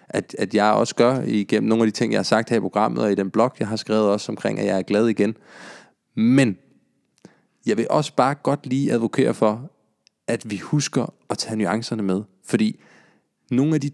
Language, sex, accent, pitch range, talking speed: Danish, male, native, 105-130 Hz, 215 wpm